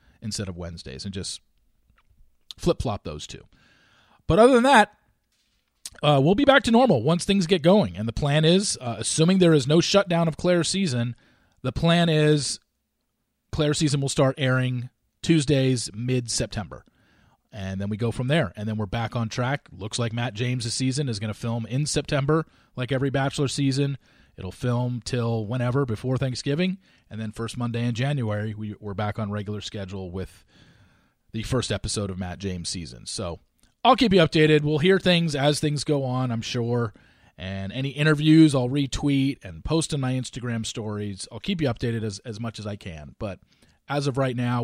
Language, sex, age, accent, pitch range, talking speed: English, male, 30-49, American, 110-145 Hz, 185 wpm